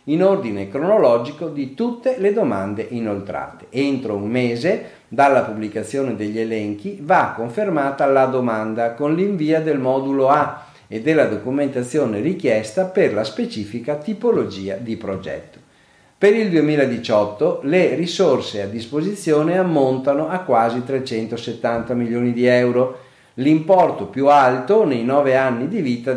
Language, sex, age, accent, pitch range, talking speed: Italian, male, 50-69, native, 115-150 Hz, 130 wpm